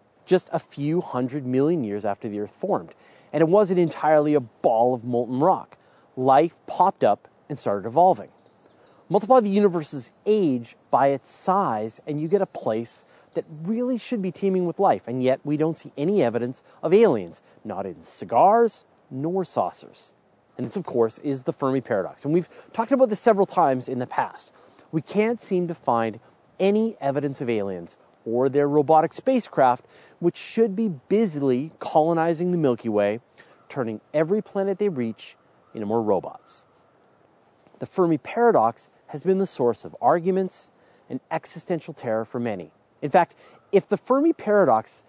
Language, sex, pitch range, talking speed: English, male, 125-195 Hz, 165 wpm